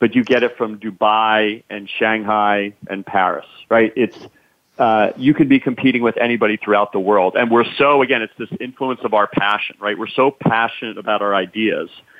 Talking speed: 190 wpm